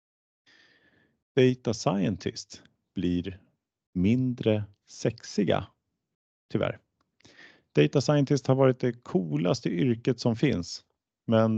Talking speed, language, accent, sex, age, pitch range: 85 wpm, Swedish, Norwegian, male, 30-49, 90-125 Hz